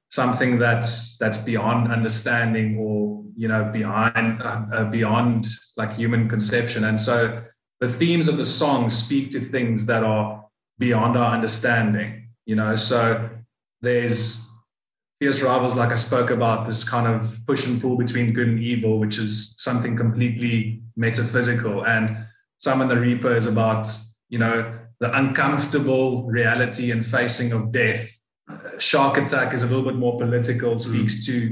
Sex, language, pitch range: male, English, 115-125 Hz